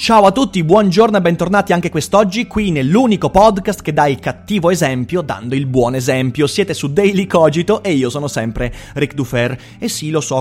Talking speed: 195 wpm